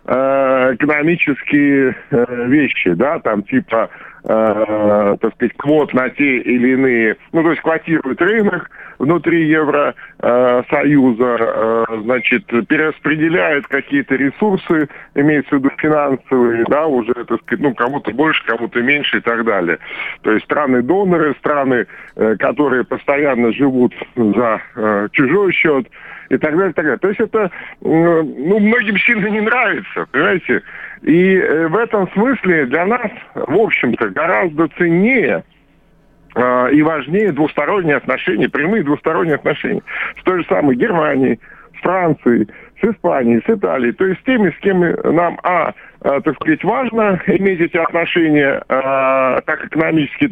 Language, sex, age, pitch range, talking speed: Russian, male, 50-69, 125-175 Hz, 135 wpm